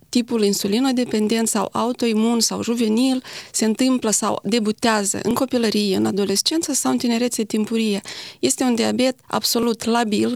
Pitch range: 215-250 Hz